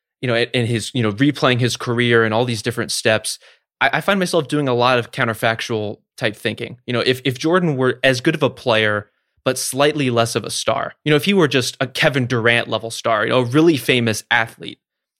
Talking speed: 230 wpm